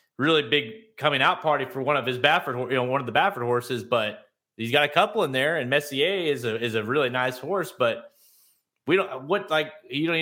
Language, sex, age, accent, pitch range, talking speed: English, male, 30-49, American, 115-145 Hz, 240 wpm